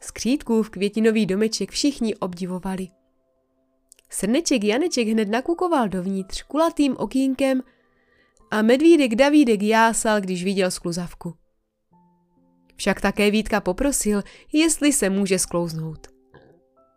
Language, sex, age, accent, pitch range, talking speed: Czech, female, 20-39, native, 175-255 Hz, 100 wpm